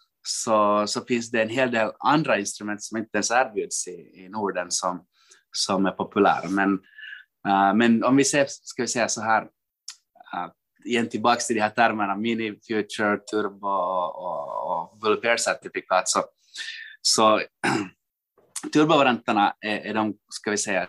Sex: male